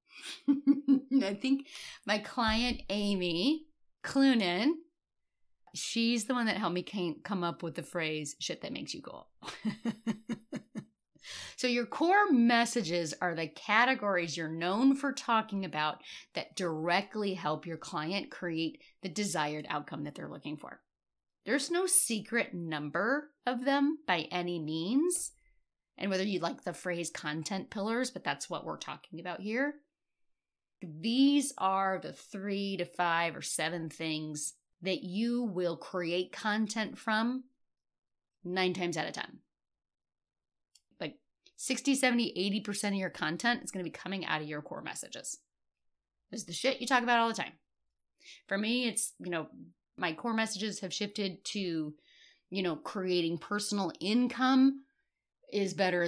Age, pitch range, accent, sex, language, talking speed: 30-49, 170-245 Hz, American, female, English, 145 wpm